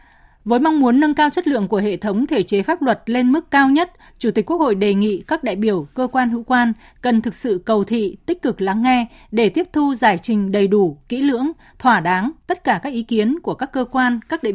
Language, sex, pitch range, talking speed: Vietnamese, female, 205-270 Hz, 255 wpm